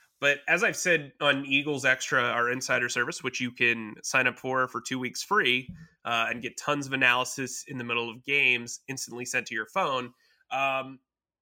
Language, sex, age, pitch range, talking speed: English, male, 20-39, 120-140 Hz, 195 wpm